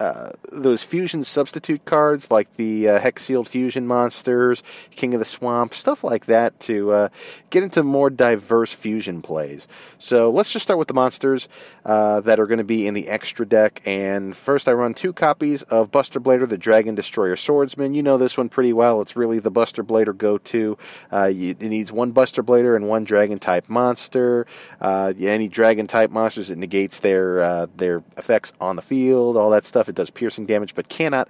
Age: 40-59